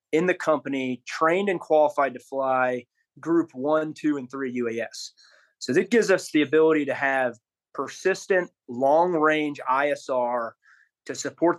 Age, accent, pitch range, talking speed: 30-49, American, 130-160 Hz, 145 wpm